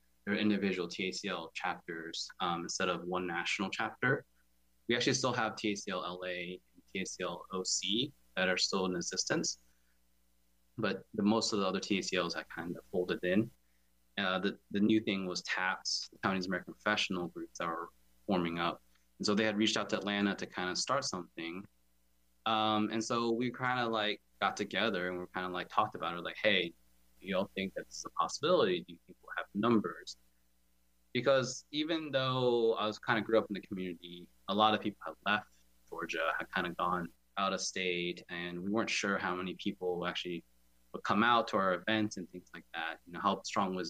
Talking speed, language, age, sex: 195 wpm, English, 20-39, male